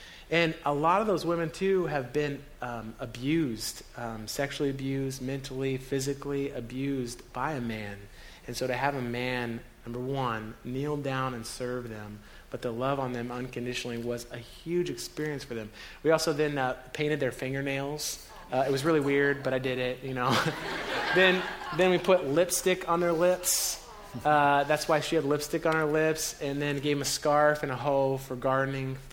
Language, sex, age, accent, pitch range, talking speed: English, male, 30-49, American, 125-155 Hz, 190 wpm